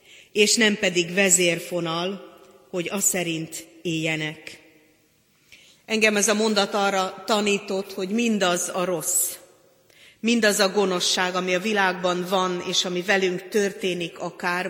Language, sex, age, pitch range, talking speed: Hungarian, female, 30-49, 170-200 Hz, 125 wpm